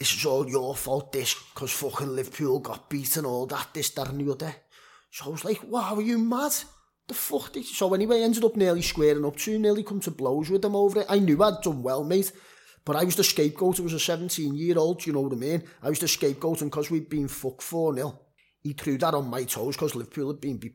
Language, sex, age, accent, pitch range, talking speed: English, male, 30-49, British, 115-155 Hz, 250 wpm